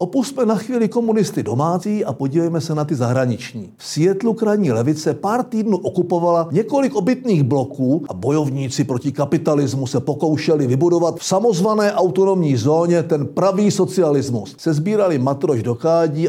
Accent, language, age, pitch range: native, Czech, 50-69, 140-195 Hz